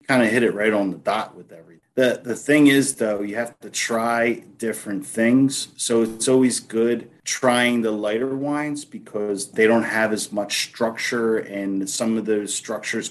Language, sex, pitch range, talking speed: English, male, 100-120 Hz, 190 wpm